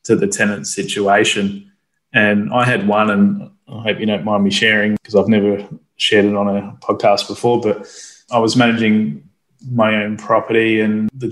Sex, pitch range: male, 105-120 Hz